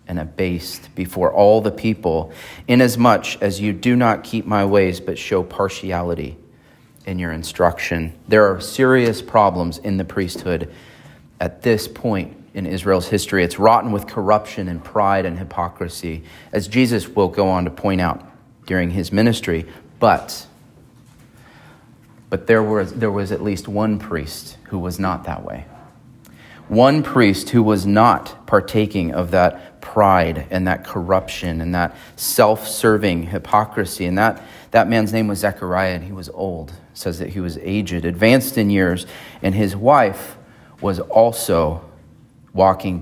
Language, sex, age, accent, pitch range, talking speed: English, male, 30-49, American, 90-110 Hz, 150 wpm